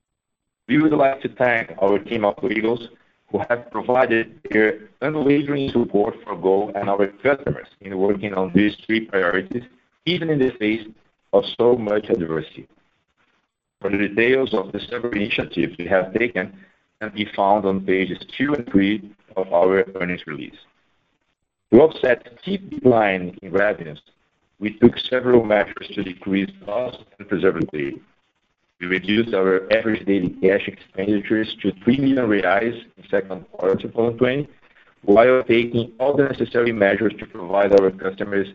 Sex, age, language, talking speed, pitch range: male, 60-79, Portuguese, 155 wpm, 95-120 Hz